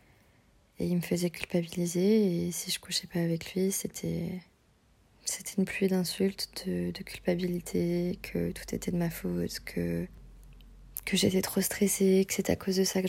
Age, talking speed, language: 20-39, 175 wpm, French